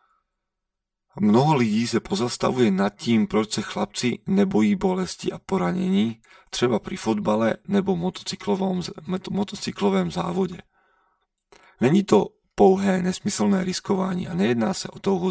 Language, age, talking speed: Slovak, 40-59, 115 wpm